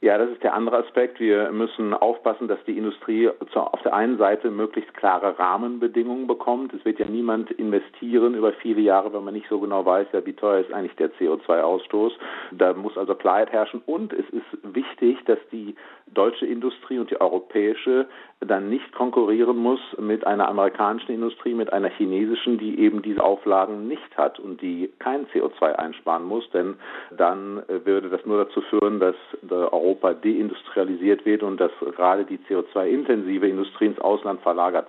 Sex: male